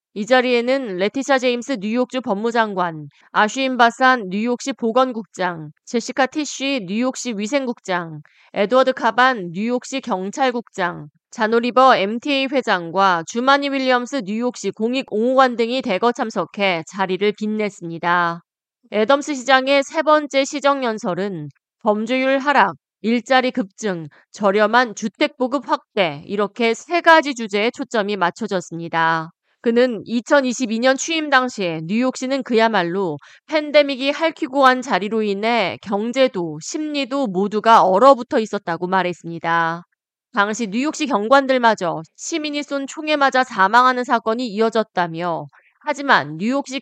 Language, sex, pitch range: Korean, female, 195-260 Hz